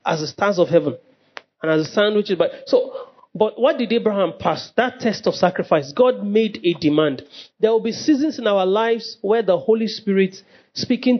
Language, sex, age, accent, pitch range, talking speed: English, male, 40-59, Nigerian, 180-245 Hz, 195 wpm